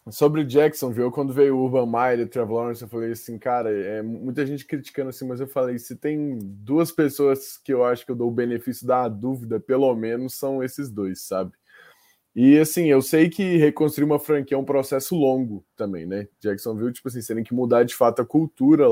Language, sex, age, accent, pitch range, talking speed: Portuguese, male, 20-39, Brazilian, 115-140 Hz, 215 wpm